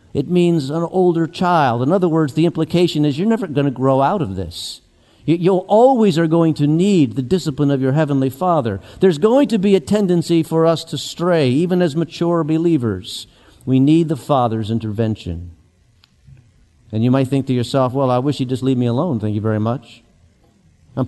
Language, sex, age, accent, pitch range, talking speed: English, male, 50-69, American, 110-150 Hz, 195 wpm